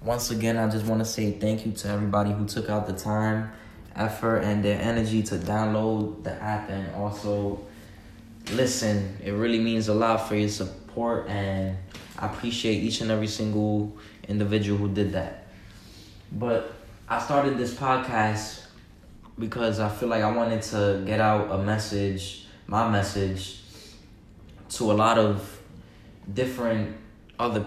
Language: English